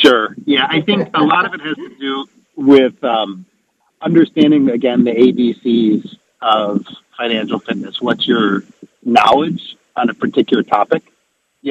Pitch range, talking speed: 105-135 Hz, 145 wpm